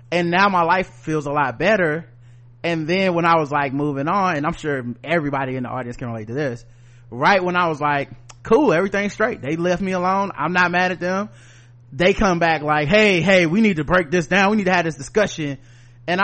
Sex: male